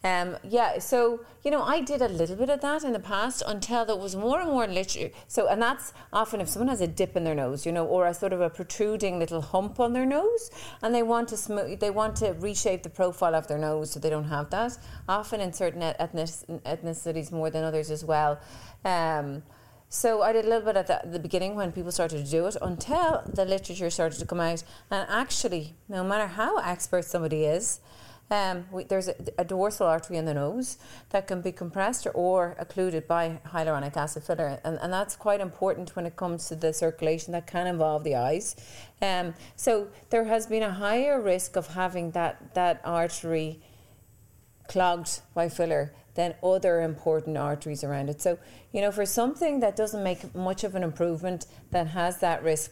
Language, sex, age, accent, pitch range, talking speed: English, female, 30-49, Irish, 160-205 Hz, 210 wpm